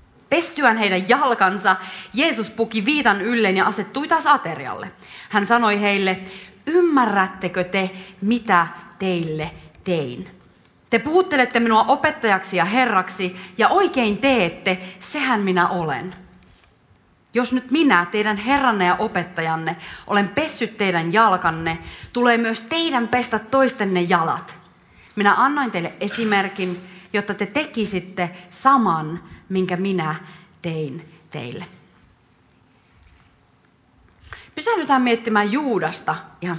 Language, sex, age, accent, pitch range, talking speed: Finnish, female, 30-49, native, 180-245 Hz, 105 wpm